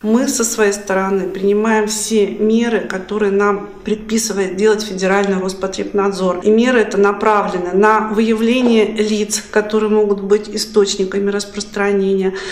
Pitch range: 195-220 Hz